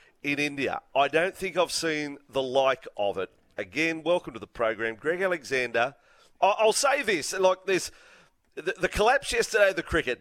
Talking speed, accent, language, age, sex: 170 wpm, Australian, English, 40-59, male